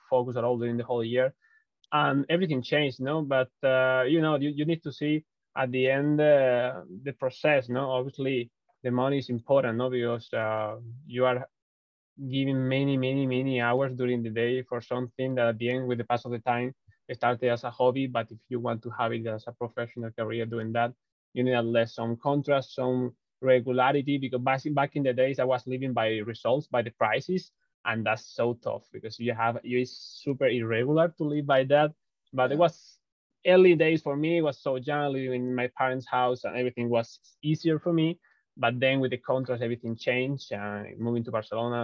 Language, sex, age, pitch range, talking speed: English, male, 20-39, 115-135 Hz, 205 wpm